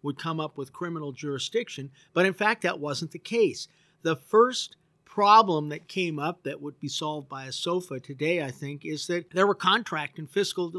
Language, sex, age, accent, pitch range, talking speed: English, male, 50-69, American, 145-180 Hz, 200 wpm